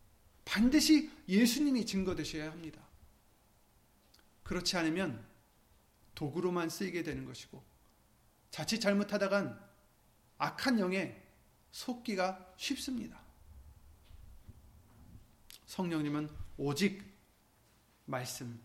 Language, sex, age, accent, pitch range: Korean, male, 30-49, native, 120-195 Hz